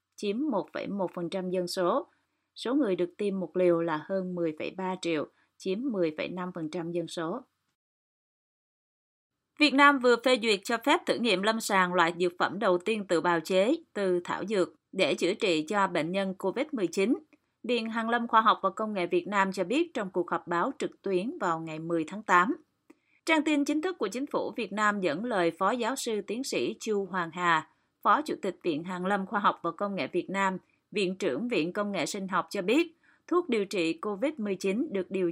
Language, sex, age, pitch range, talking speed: Vietnamese, female, 20-39, 180-230 Hz, 200 wpm